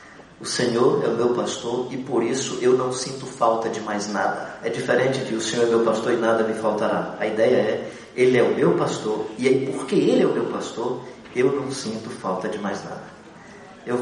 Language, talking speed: Portuguese, 225 wpm